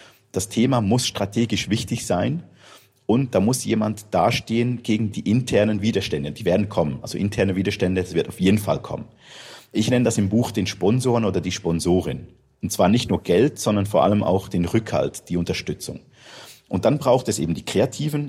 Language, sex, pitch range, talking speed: German, male, 95-120 Hz, 185 wpm